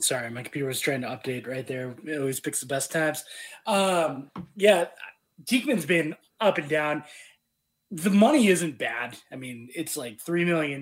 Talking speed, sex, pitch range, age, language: 175 wpm, male, 130-175 Hz, 20-39, English